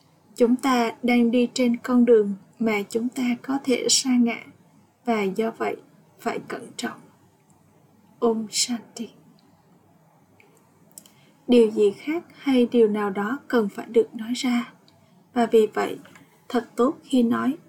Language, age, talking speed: Vietnamese, 20-39, 140 wpm